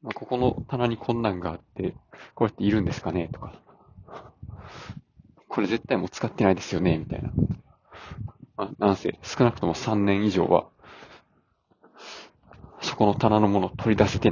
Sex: male